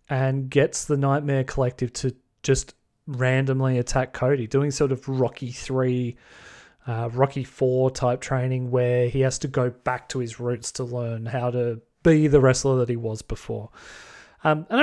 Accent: Australian